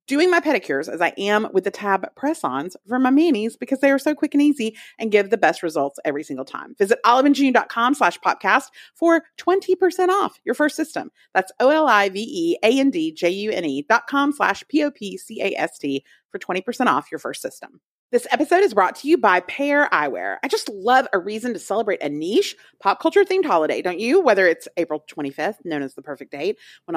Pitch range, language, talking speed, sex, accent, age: 195-295 Hz, English, 180 wpm, female, American, 40-59